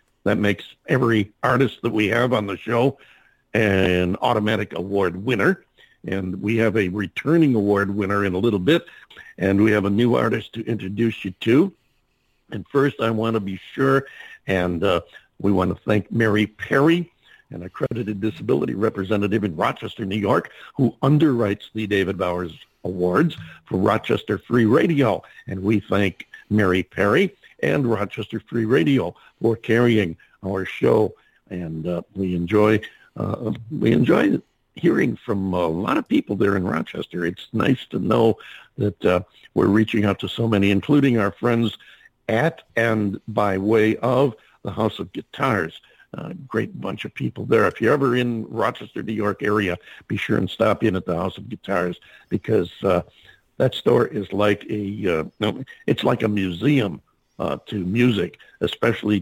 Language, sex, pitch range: English, male, 95-115 Hz